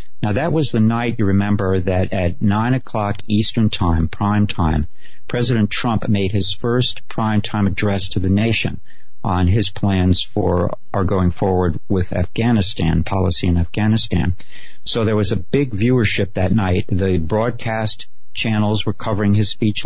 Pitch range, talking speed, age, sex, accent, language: 95-115 Hz, 160 wpm, 60-79, male, American, English